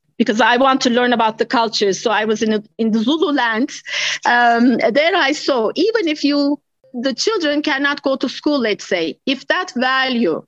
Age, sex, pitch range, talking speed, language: 40-59, female, 235-285 Hz, 200 wpm, English